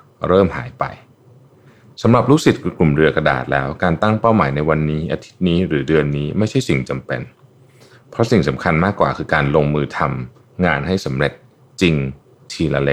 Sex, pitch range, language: male, 70-110 Hz, Thai